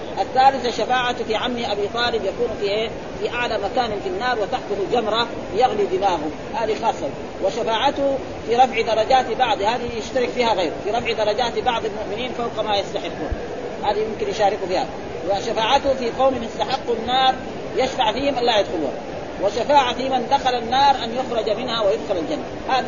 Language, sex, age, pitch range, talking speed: Arabic, female, 40-59, 205-260 Hz, 155 wpm